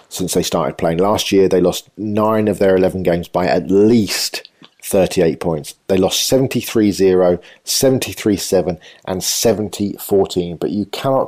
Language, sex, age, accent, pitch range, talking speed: English, male, 40-59, British, 90-105 Hz, 145 wpm